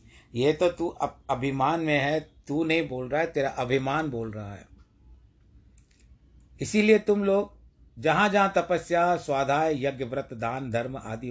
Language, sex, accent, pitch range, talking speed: Hindi, male, native, 110-130 Hz, 150 wpm